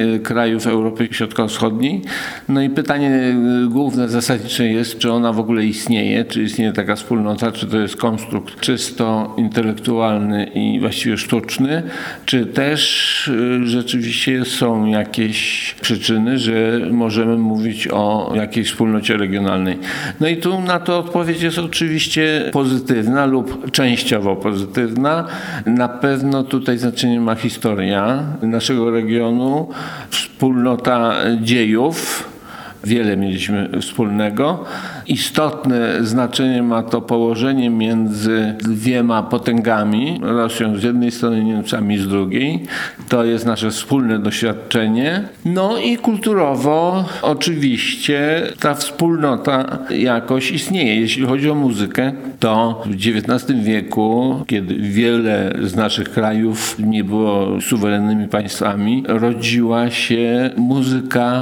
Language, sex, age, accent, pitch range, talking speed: Polish, male, 50-69, native, 110-130 Hz, 110 wpm